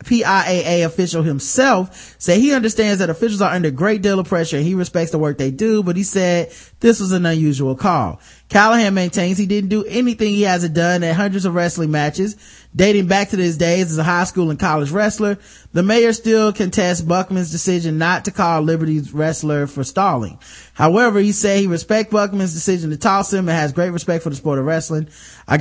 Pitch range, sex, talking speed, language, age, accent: 155-195 Hz, male, 210 wpm, English, 20-39, American